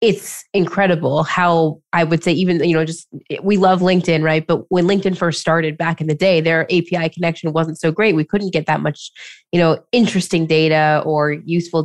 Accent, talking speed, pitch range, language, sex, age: American, 205 wpm, 155-190 Hz, English, female, 20-39